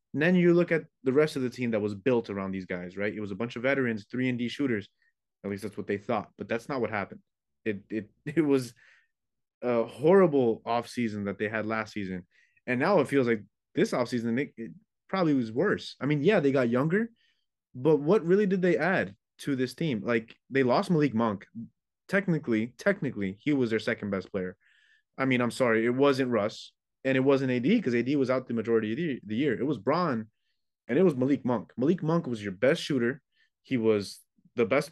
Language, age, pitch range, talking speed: English, 20-39, 110-140 Hz, 215 wpm